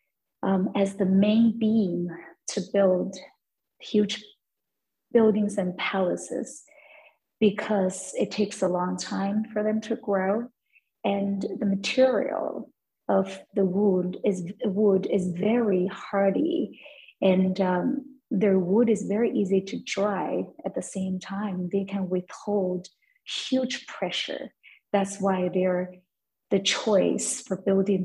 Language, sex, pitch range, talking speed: English, female, 190-230 Hz, 120 wpm